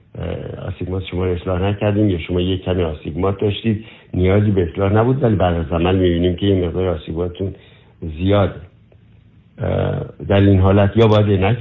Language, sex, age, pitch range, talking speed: Persian, male, 60-79, 90-115 Hz, 150 wpm